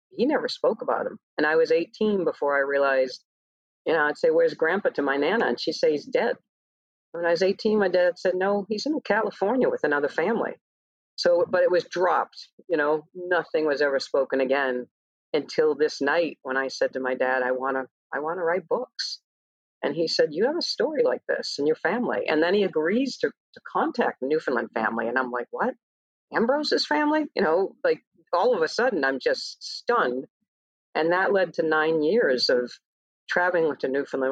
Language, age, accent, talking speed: English, 50-69, American, 205 wpm